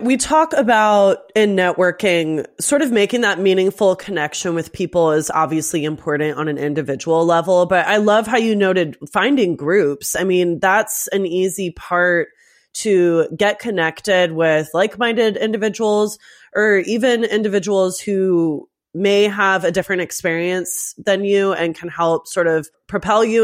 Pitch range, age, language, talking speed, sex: 165-215 Hz, 20-39, English, 150 wpm, female